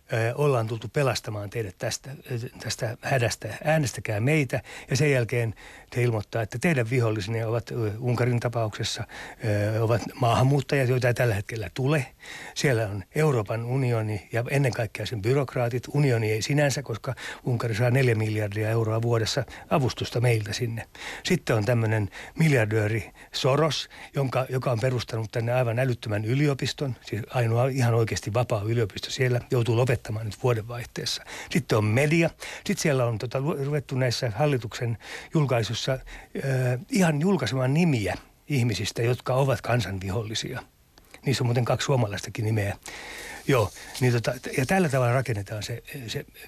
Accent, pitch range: native, 110-135 Hz